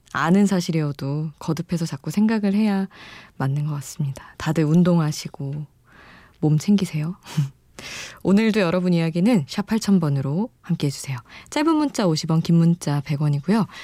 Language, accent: Korean, native